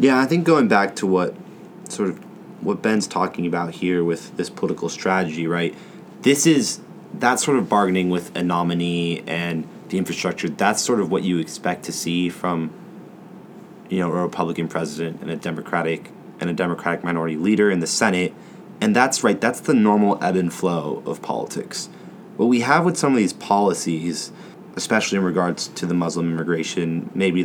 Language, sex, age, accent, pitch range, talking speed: English, male, 30-49, American, 85-120 Hz, 180 wpm